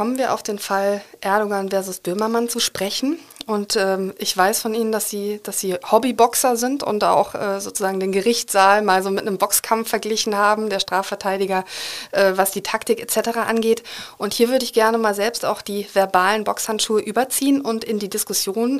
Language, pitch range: German, 195-230 Hz